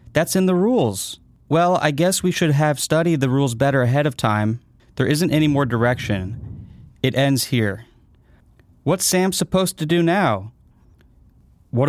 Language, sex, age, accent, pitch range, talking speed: English, male, 30-49, American, 100-135 Hz, 160 wpm